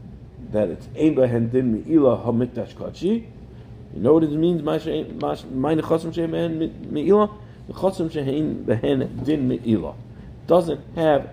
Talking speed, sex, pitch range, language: 140 wpm, male, 110-140 Hz, English